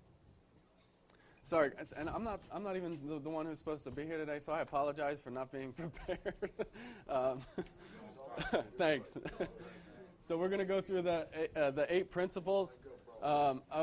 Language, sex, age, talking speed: English, male, 20-39, 170 wpm